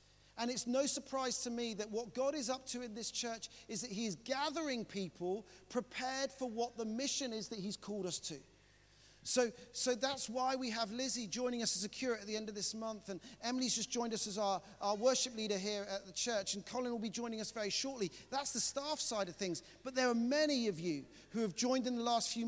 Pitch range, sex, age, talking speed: 180-245 Hz, male, 40-59, 245 wpm